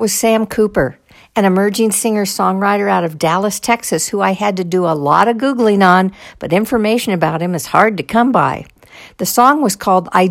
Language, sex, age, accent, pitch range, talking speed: English, female, 60-79, American, 180-220 Hz, 205 wpm